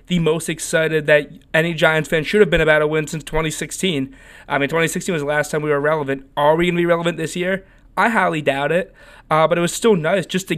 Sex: male